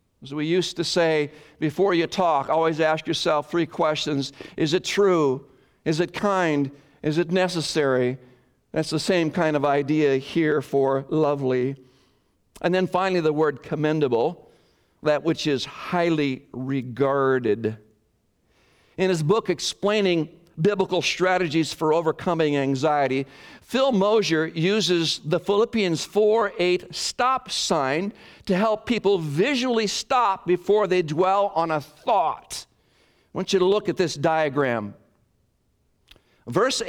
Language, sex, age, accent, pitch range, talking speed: English, male, 60-79, American, 145-190 Hz, 130 wpm